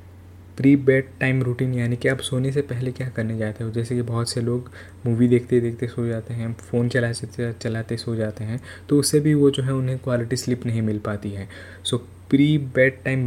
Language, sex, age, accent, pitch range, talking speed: Hindi, male, 20-39, native, 110-125 Hz, 215 wpm